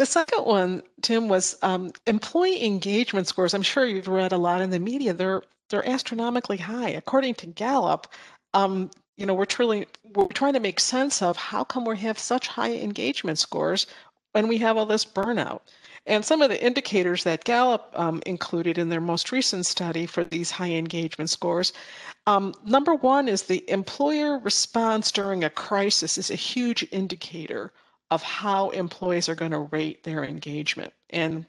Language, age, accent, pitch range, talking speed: English, 50-69, American, 175-225 Hz, 175 wpm